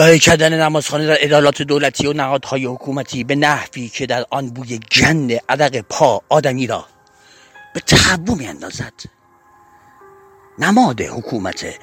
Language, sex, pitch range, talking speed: Persian, male, 125-190 Hz, 130 wpm